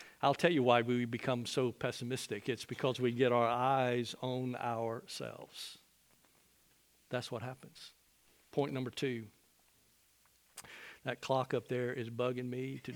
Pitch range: 120-135 Hz